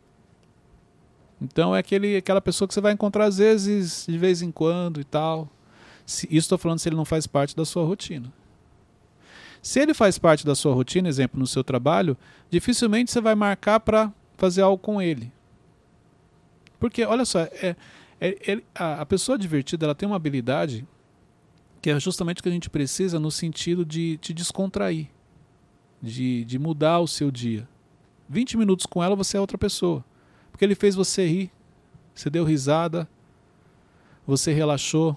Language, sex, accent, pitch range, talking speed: Portuguese, male, Brazilian, 140-195 Hz, 160 wpm